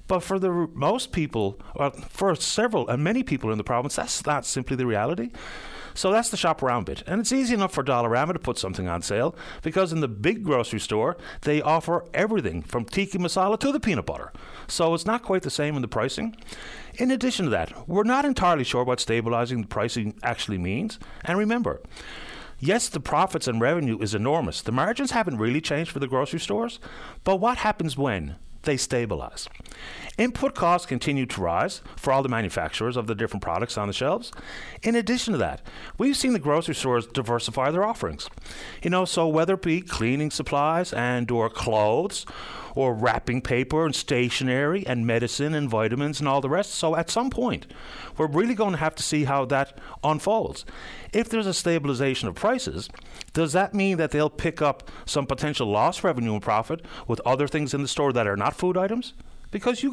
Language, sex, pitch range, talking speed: English, male, 125-190 Hz, 195 wpm